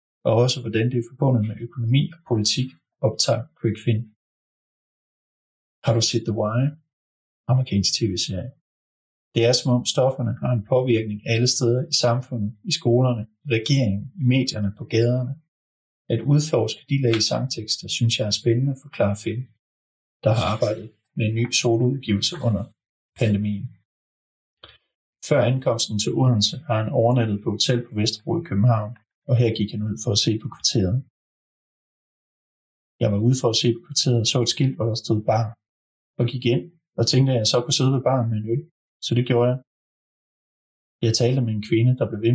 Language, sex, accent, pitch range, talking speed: Danish, male, native, 110-130 Hz, 180 wpm